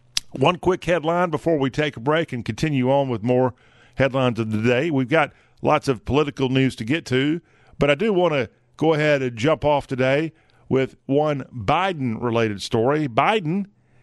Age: 50-69